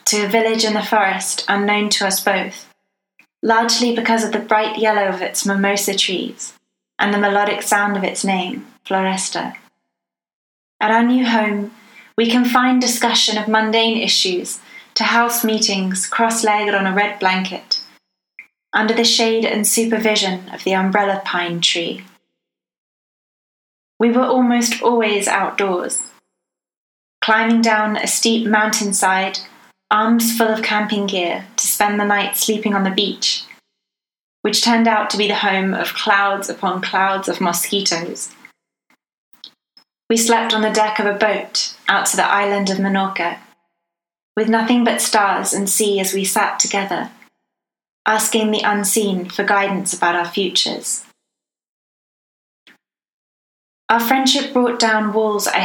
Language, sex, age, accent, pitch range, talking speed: English, female, 20-39, British, 195-225 Hz, 140 wpm